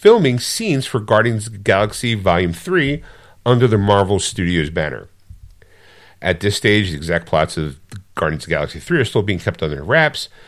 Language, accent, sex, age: English, American, male, 50-69